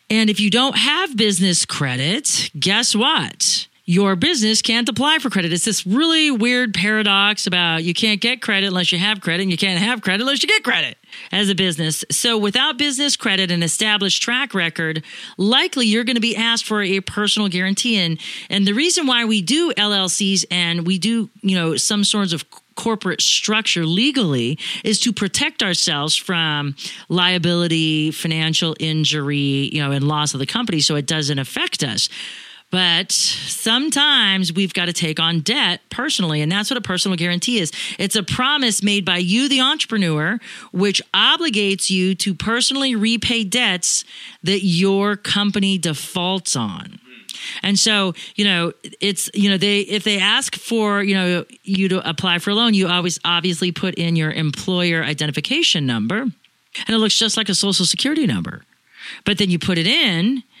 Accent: American